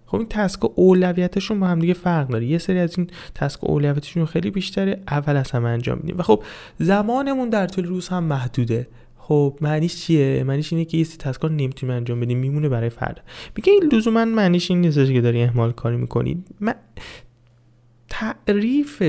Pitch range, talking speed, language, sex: 135-190 Hz, 180 wpm, Persian, male